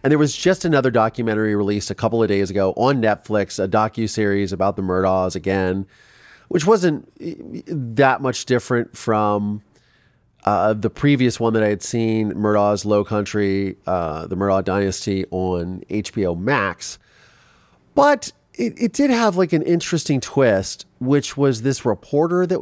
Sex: male